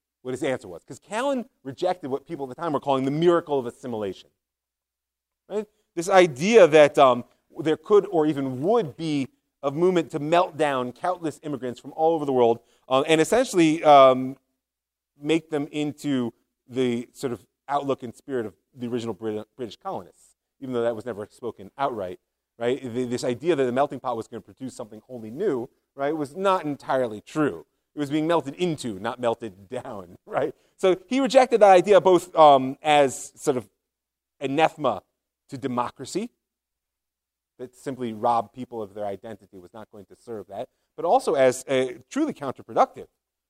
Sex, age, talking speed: male, 30-49, 175 wpm